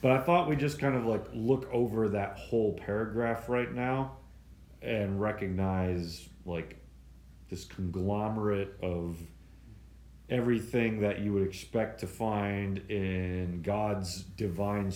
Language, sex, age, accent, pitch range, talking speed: English, male, 40-59, American, 85-105 Hz, 125 wpm